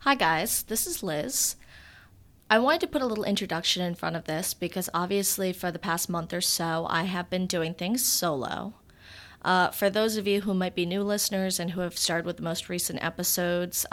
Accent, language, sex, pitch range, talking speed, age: American, English, female, 170-200 Hz, 210 wpm, 30-49